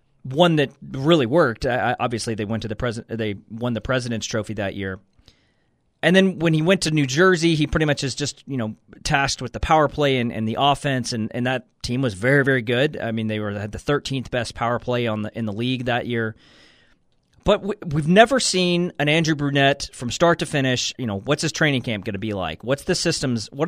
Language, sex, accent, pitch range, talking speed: English, male, American, 115-150 Hz, 235 wpm